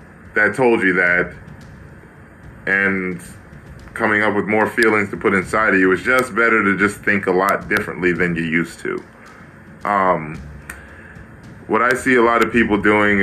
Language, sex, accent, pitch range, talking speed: English, male, American, 85-125 Hz, 170 wpm